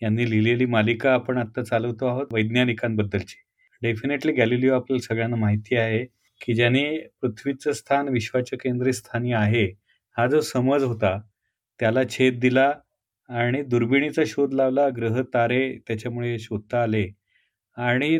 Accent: native